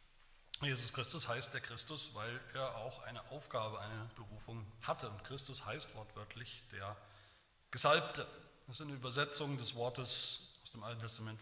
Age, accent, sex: 40-59, German, male